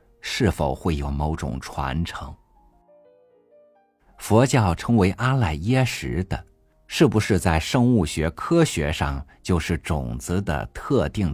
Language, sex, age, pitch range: Chinese, male, 50-69, 85-125 Hz